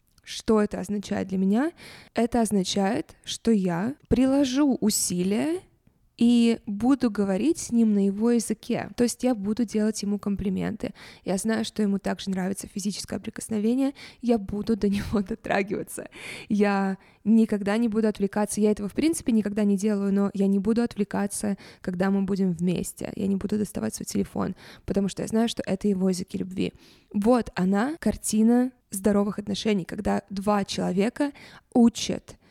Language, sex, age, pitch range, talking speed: Russian, female, 20-39, 195-230 Hz, 155 wpm